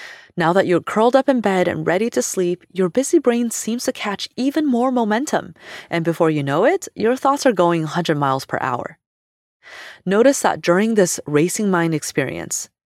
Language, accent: English, American